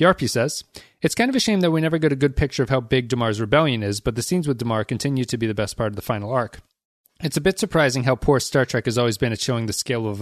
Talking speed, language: 300 wpm, English